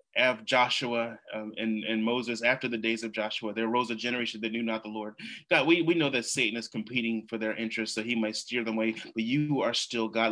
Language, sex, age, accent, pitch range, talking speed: English, male, 30-49, American, 110-130 Hz, 240 wpm